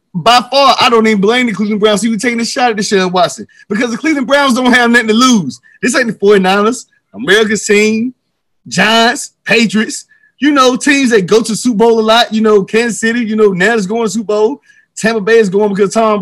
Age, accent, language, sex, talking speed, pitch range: 30-49, American, English, male, 230 wpm, 205-255 Hz